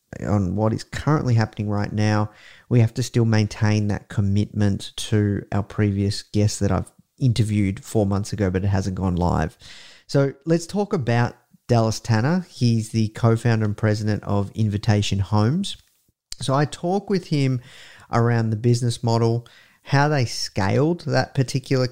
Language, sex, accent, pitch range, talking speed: English, male, Australian, 105-120 Hz, 155 wpm